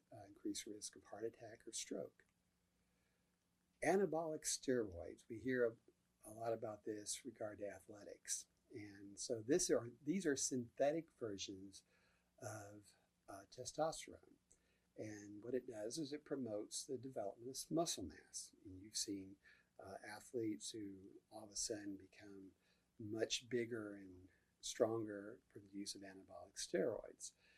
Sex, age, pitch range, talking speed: male, 50-69, 100-125 Hz, 135 wpm